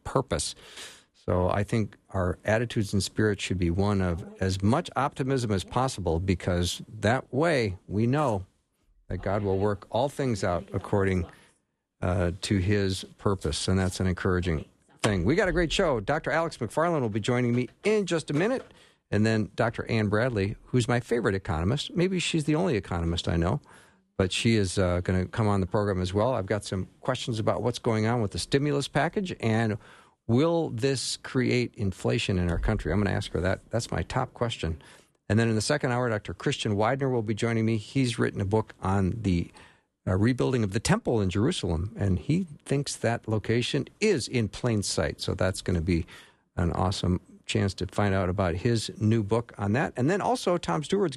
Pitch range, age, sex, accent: 95-125 Hz, 50-69, male, American